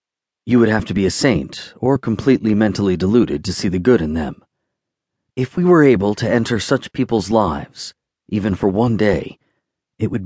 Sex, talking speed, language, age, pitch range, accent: male, 185 wpm, English, 40-59, 95-115 Hz, American